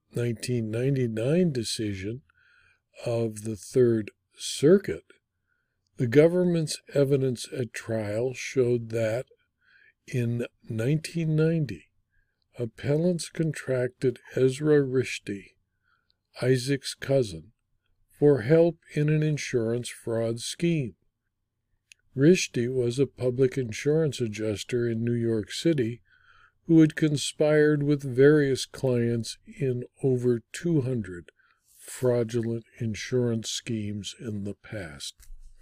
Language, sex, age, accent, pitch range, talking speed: English, male, 50-69, American, 115-150 Hz, 90 wpm